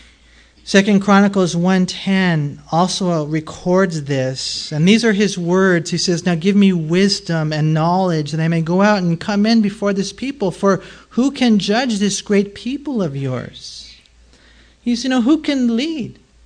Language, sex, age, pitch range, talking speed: English, male, 50-69, 135-190 Hz, 170 wpm